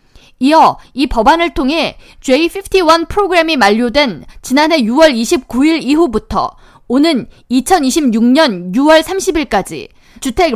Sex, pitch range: female, 250-345 Hz